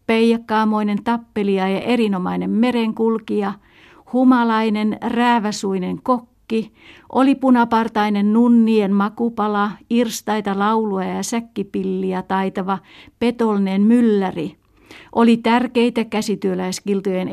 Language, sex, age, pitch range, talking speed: Italian, female, 60-79, 190-230 Hz, 75 wpm